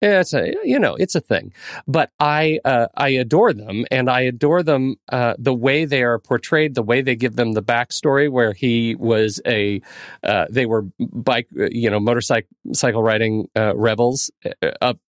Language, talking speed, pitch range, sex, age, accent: English, 185 wpm, 110-135 Hz, male, 40-59, American